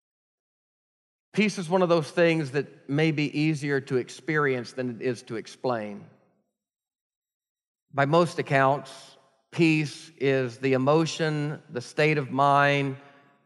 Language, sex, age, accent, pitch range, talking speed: English, male, 40-59, American, 135-170 Hz, 125 wpm